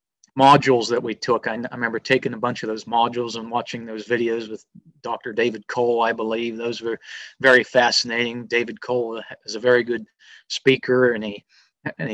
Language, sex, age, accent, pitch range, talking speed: English, male, 30-49, American, 115-135 Hz, 185 wpm